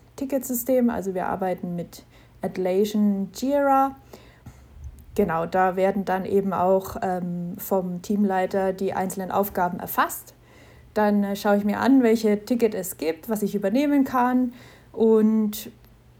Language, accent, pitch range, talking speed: English, German, 185-215 Hz, 125 wpm